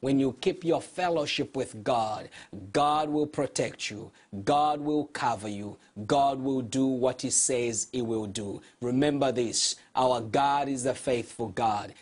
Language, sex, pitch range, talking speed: English, male, 120-150 Hz, 160 wpm